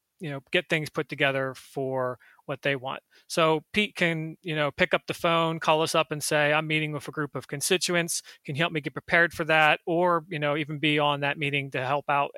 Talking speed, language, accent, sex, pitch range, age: 245 wpm, English, American, male, 145-165 Hz, 30-49